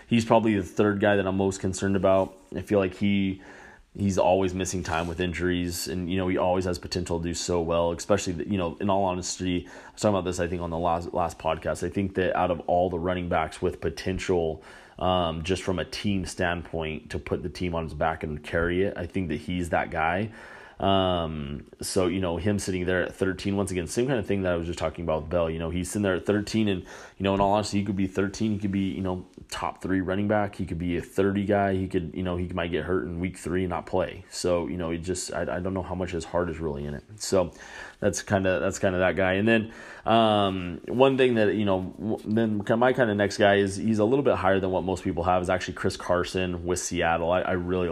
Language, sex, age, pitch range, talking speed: English, male, 30-49, 85-100 Hz, 265 wpm